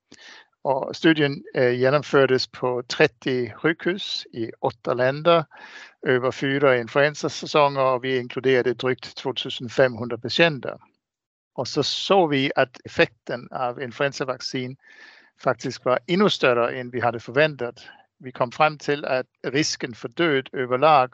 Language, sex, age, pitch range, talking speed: Swedish, male, 60-79, 125-145 Hz, 125 wpm